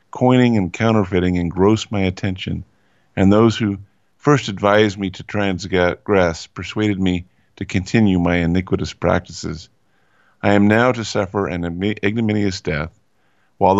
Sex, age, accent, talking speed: male, 50-69, American, 130 wpm